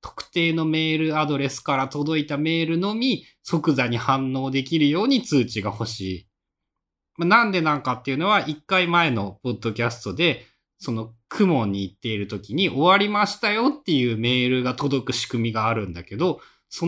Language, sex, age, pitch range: Japanese, male, 20-39, 115-170 Hz